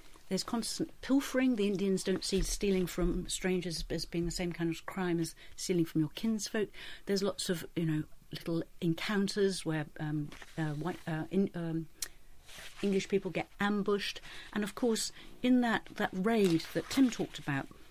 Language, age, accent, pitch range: English, 50-69, British, 160-195 Hz